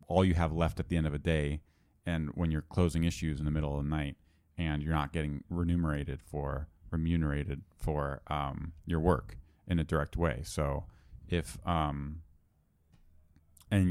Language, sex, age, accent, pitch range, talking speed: English, male, 30-49, American, 75-90 Hz, 175 wpm